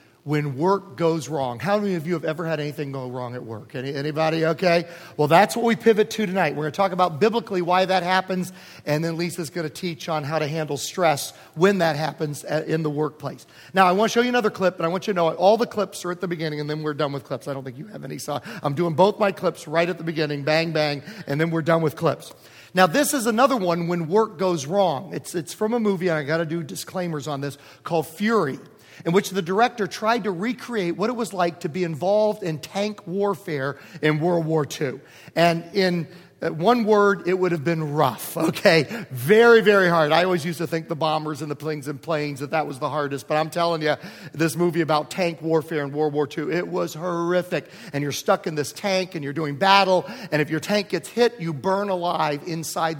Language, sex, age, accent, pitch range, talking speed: English, male, 40-59, American, 155-200 Hz, 240 wpm